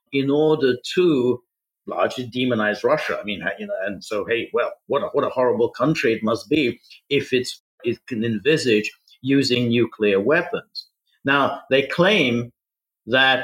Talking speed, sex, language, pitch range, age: 145 wpm, male, English, 110-145 Hz, 50-69